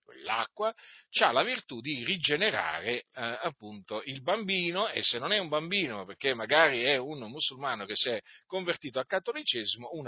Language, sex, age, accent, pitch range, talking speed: Italian, male, 40-59, native, 120-190 Hz, 165 wpm